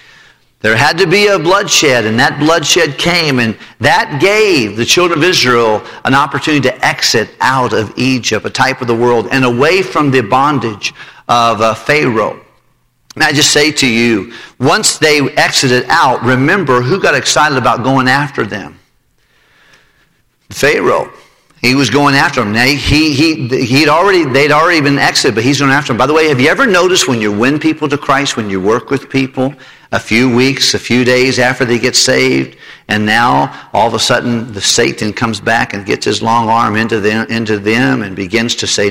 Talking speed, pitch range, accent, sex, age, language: 195 wpm, 115-145 Hz, American, male, 50-69, English